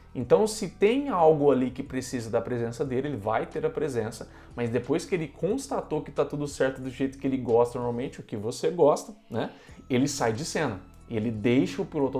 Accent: Brazilian